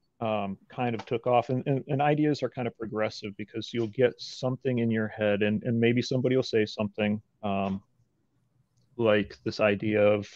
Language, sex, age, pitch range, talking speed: English, male, 30-49, 105-125 Hz, 185 wpm